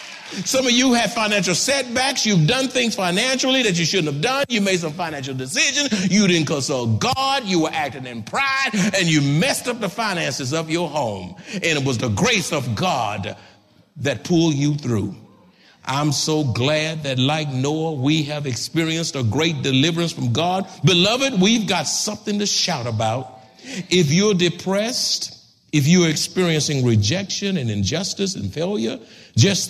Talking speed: 165 wpm